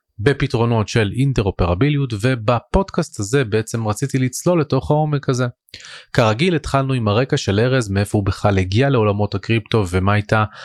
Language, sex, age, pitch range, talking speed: Hebrew, male, 30-49, 100-135 Hz, 140 wpm